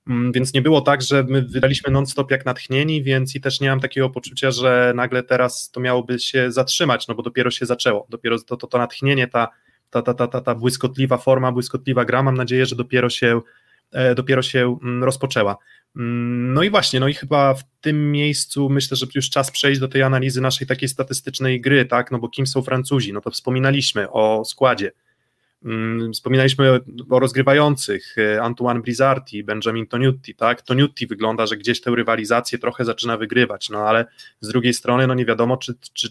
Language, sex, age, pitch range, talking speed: Polish, male, 20-39, 120-135 Hz, 180 wpm